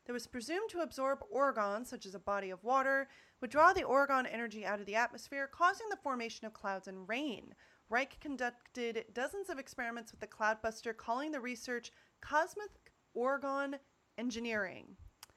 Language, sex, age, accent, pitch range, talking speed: English, female, 30-49, American, 205-265 Hz, 165 wpm